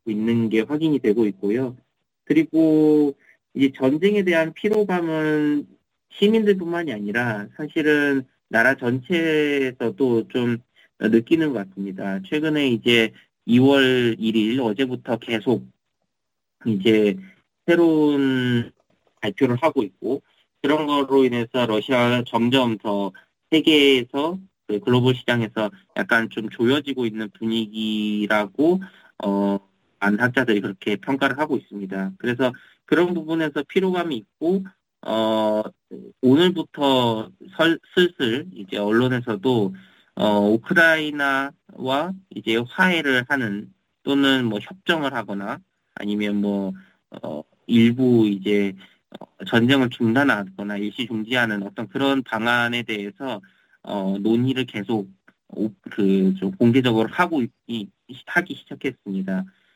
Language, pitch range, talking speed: English, 105-145 Hz, 95 wpm